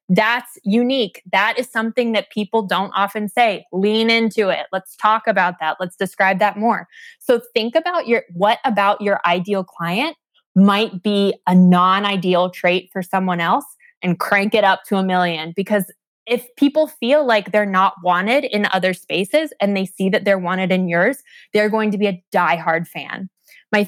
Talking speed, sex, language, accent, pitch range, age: 180 wpm, female, English, American, 190-230 Hz, 20-39